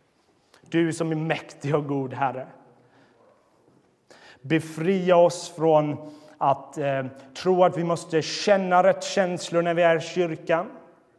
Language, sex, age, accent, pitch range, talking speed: Swedish, male, 30-49, native, 130-160 Hz, 130 wpm